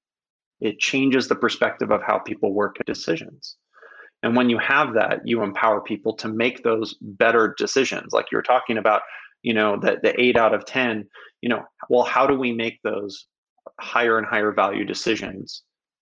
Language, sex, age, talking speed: English, male, 30-49, 185 wpm